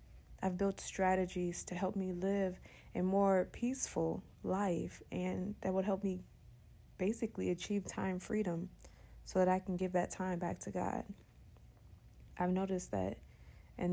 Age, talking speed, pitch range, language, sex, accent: 20-39, 145 wpm, 175-200 Hz, English, female, American